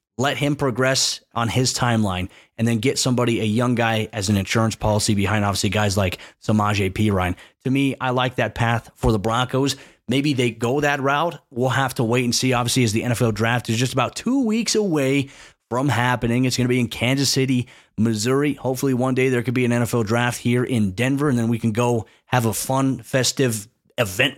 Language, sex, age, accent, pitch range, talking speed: English, male, 30-49, American, 115-140 Hz, 215 wpm